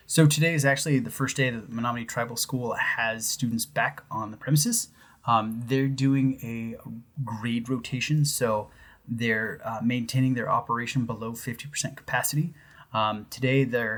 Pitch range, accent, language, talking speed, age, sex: 115-135 Hz, American, English, 150 wpm, 20-39, male